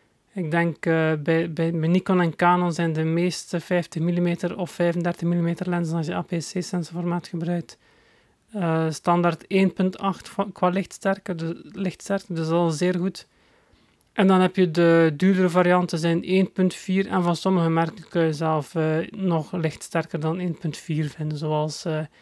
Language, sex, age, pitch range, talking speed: Dutch, male, 30-49, 165-185 Hz, 160 wpm